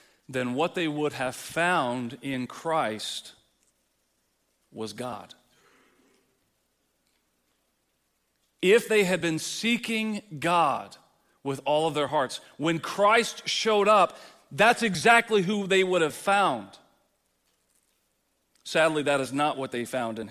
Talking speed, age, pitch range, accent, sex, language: 120 wpm, 40-59, 115-150 Hz, American, male, English